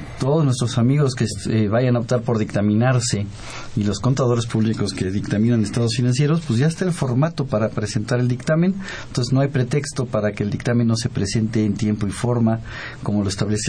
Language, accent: Spanish, Mexican